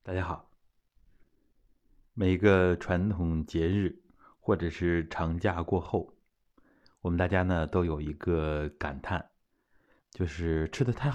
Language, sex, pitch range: Chinese, male, 80-105 Hz